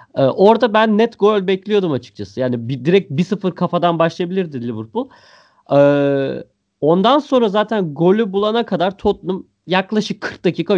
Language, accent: Turkish, native